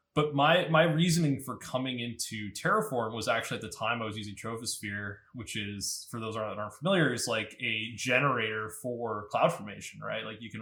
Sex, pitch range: male, 110-140 Hz